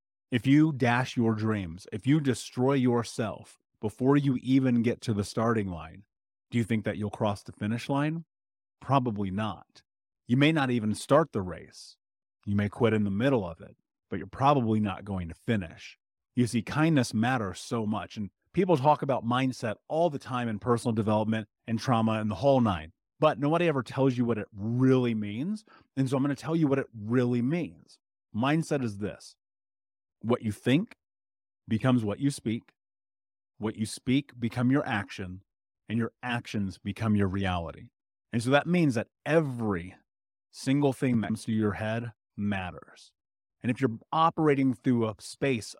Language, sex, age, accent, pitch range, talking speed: English, male, 30-49, American, 105-135 Hz, 180 wpm